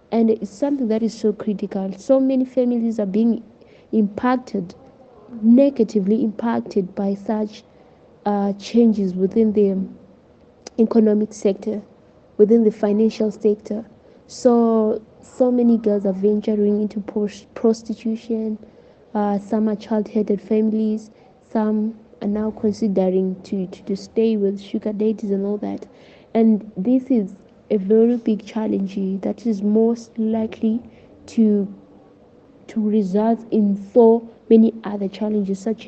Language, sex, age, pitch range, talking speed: English, female, 20-39, 210-230 Hz, 125 wpm